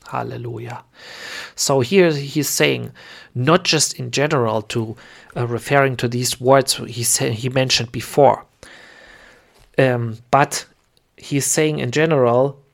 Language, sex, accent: English, male, German